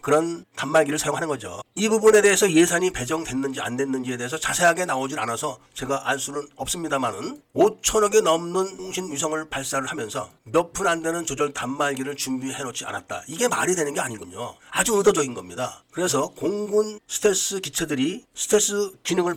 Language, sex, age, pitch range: Korean, male, 40-59, 140-200 Hz